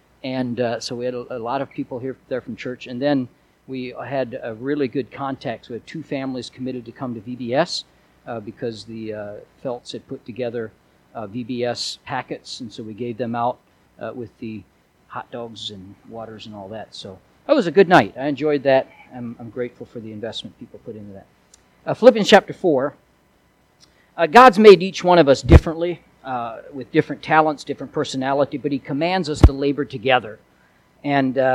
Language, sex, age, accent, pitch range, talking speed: English, male, 50-69, American, 125-165 Hz, 200 wpm